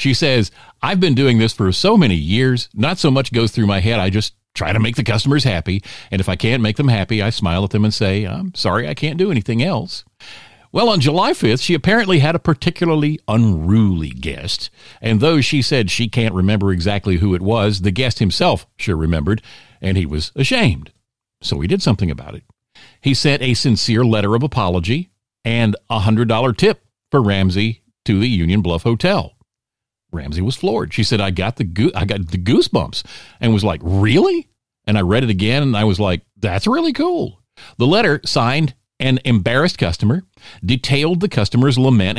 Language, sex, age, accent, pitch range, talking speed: English, male, 50-69, American, 100-130 Hz, 200 wpm